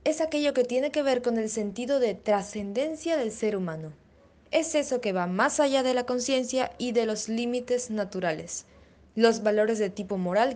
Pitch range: 200-255 Hz